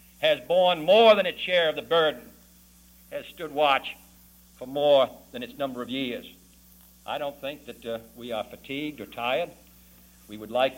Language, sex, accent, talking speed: English, male, American, 180 wpm